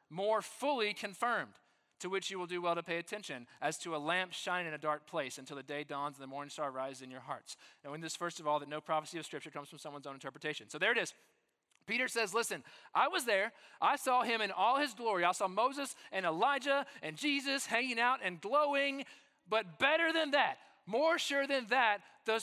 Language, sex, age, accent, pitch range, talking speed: English, male, 30-49, American, 185-285 Hz, 230 wpm